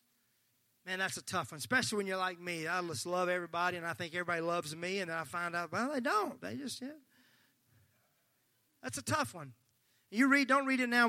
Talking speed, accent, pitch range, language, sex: 220 wpm, American, 125-205 Hz, English, male